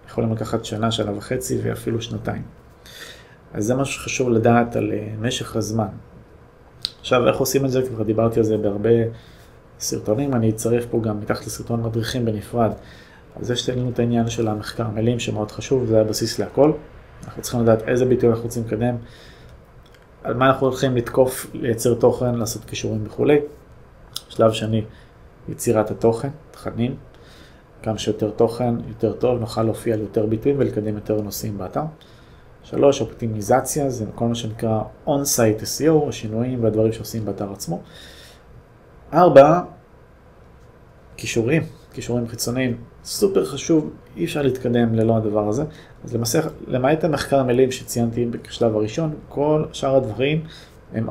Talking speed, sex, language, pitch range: 145 wpm, male, Hebrew, 110-130 Hz